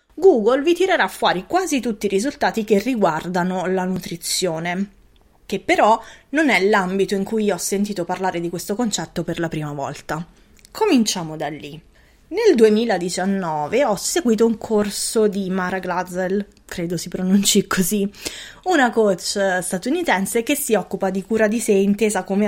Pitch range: 180-220 Hz